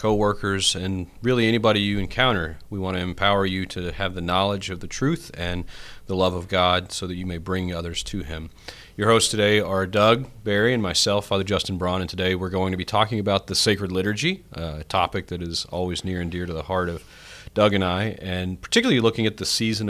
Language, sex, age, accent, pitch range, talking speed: English, male, 30-49, American, 90-100 Hz, 225 wpm